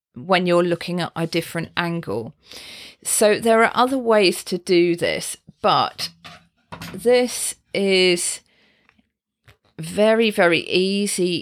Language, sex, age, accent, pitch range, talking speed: English, female, 40-59, British, 170-220 Hz, 110 wpm